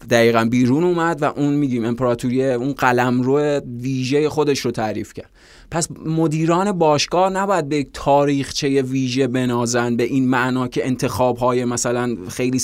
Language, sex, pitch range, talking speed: Persian, male, 125-150 Hz, 145 wpm